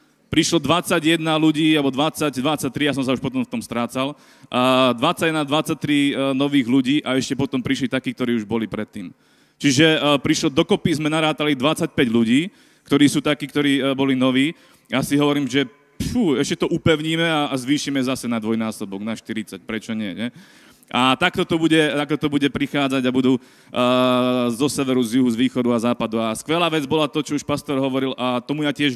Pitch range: 125-150 Hz